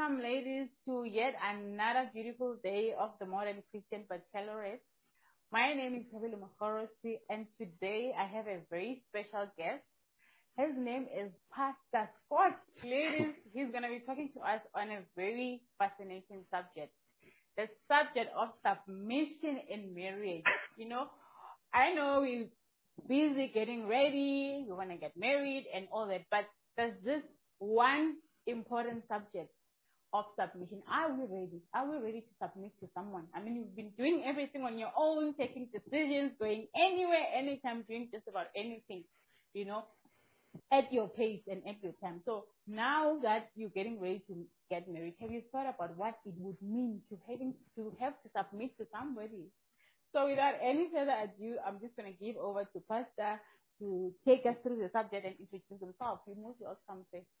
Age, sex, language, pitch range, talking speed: 30-49, female, English, 200-260 Hz, 165 wpm